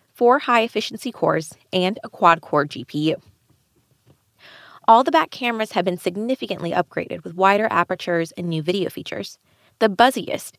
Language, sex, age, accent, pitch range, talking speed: English, female, 20-39, American, 175-235 Hz, 135 wpm